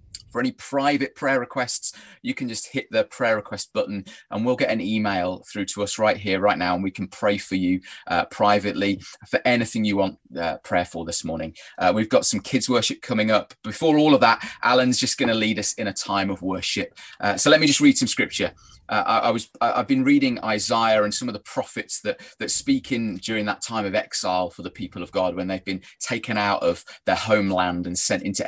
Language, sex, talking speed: English, male, 235 wpm